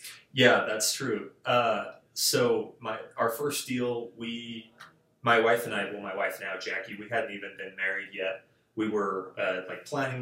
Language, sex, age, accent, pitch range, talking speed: English, male, 20-39, American, 100-120 Hz, 175 wpm